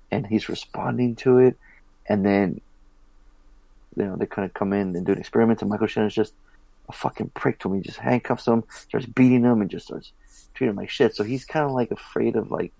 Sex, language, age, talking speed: male, English, 30-49, 240 wpm